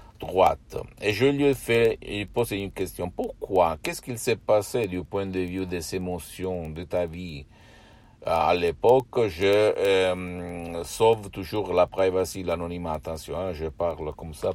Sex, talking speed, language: male, 155 wpm, Italian